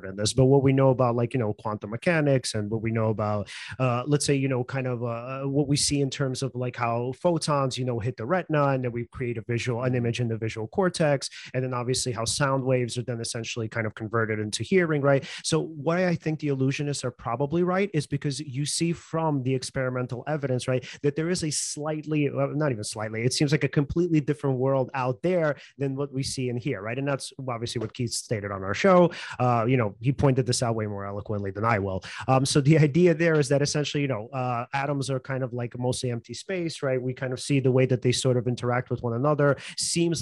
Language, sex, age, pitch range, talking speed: English, male, 30-49, 120-145 Hz, 250 wpm